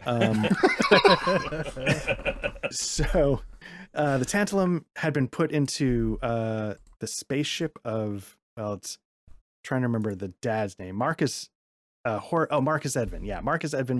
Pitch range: 100-135 Hz